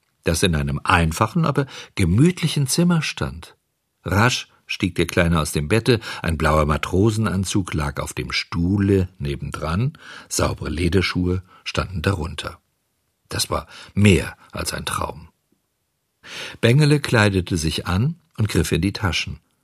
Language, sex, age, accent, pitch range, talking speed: German, male, 50-69, German, 85-130 Hz, 130 wpm